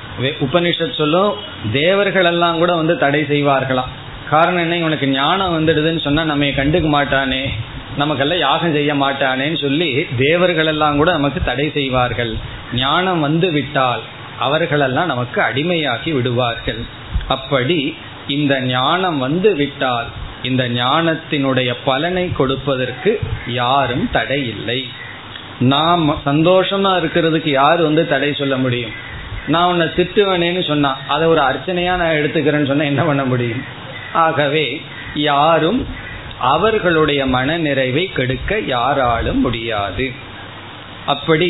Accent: native